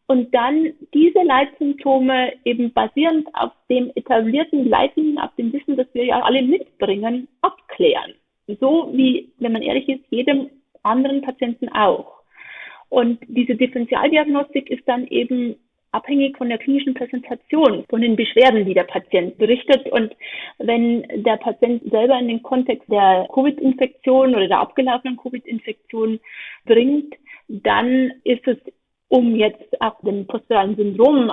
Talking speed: 135 wpm